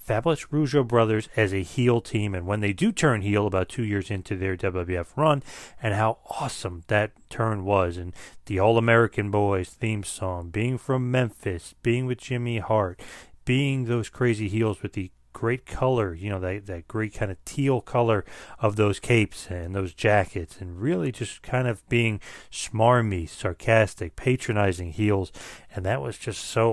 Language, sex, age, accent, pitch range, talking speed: English, male, 30-49, American, 95-115 Hz, 175 wpm